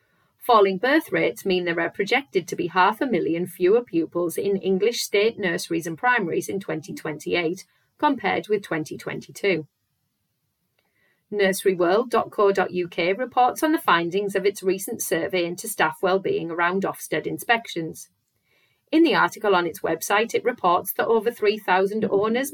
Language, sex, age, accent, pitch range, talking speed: English, female, 40-59, British, 175-230 Hz, 140 wpm